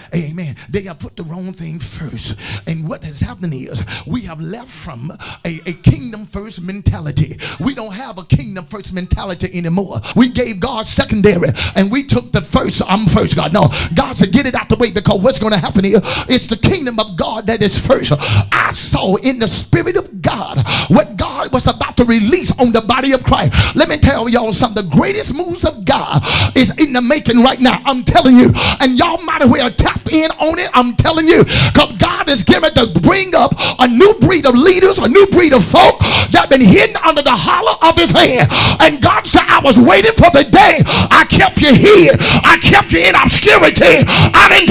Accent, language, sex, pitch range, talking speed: American, English, male, 180-275 Hz, 210 wpm